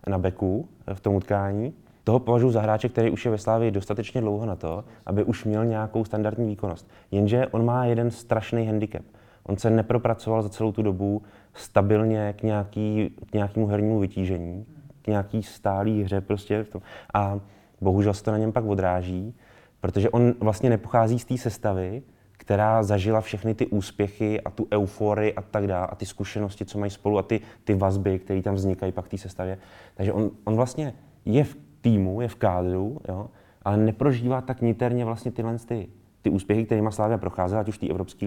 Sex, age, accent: male, 20-39, native